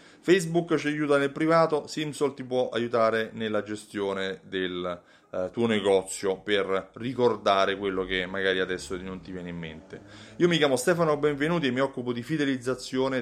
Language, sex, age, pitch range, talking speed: Italian, male, 30-49, 105-150 Hz, 165 wpm